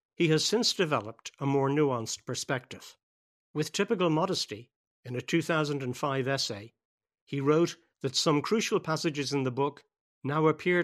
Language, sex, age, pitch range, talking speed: English, male, 60-79, 125-160 Hz, 145 wpm